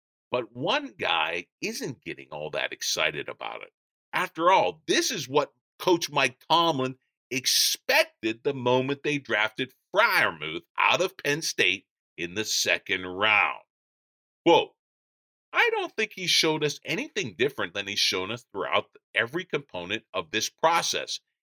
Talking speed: 145 wpm